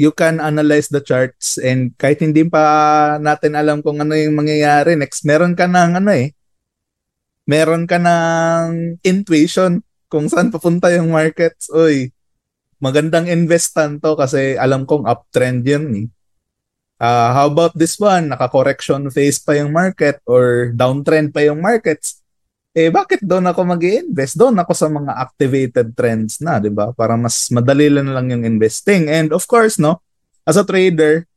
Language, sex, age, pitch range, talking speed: Filipino, male, 20-39, 130-170 Hz, 165 wpm